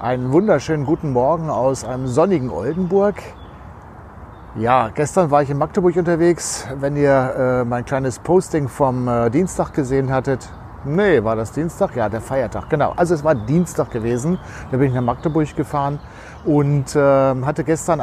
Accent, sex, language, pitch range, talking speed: German, male, German, 130-165 Hz, 165 wpm